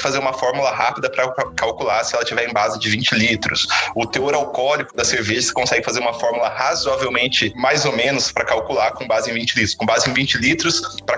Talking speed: 220 wpm